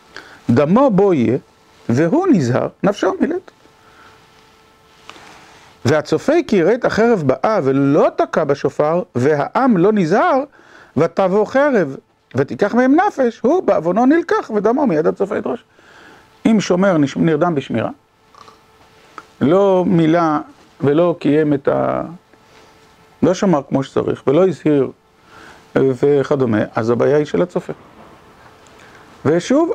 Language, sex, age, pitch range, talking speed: Hebrew, male, 50-69, 150-240 Hz, 105 wpm